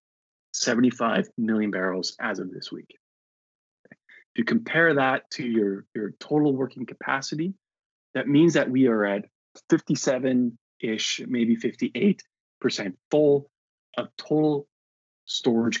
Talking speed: 115 wpm